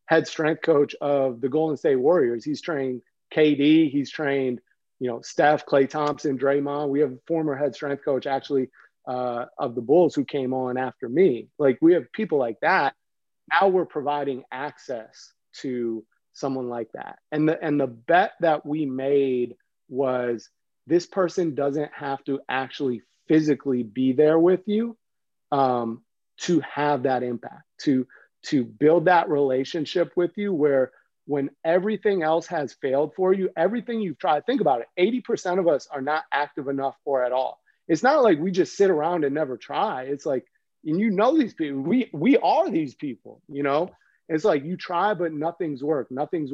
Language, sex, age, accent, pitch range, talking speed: English, male, 30-49, American, 135-170 Hz, 175 wpm